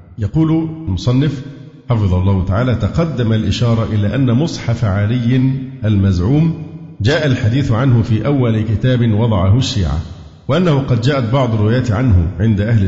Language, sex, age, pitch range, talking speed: Arabic, male, 50-69, 105-140 Hz, 130 wpm